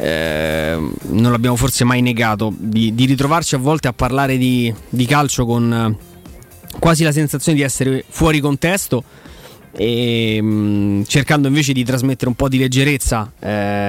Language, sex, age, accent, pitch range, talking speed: Italian, male, 20-39, native, 120-145 Hz, 155 wpm